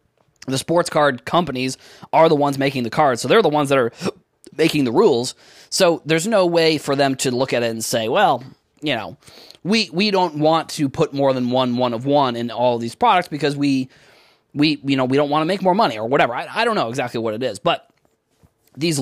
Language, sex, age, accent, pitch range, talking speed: English, male, 20-39, American, 130-160 Hz, 235 wpm